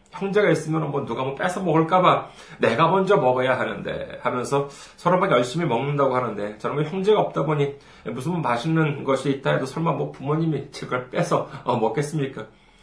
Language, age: Korean, 40-59